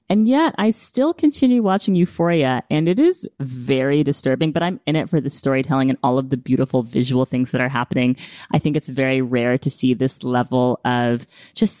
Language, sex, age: English, female, 20-39